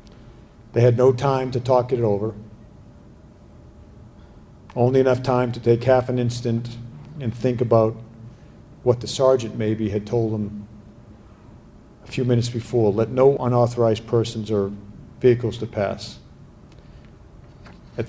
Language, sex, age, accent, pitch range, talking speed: English, male, 50-69, American, 110-125 Hz, 130 wpm